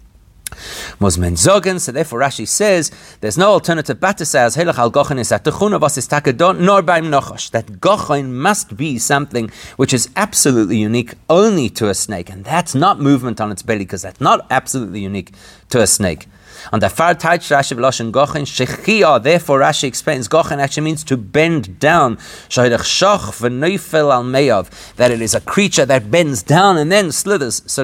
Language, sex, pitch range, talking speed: English, male, 115-160 Hz, 140 wpm